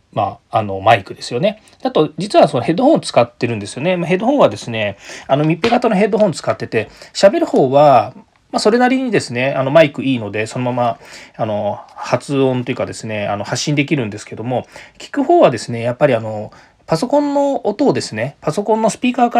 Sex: male